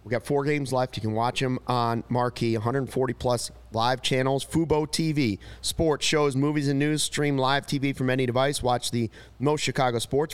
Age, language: 30-49, English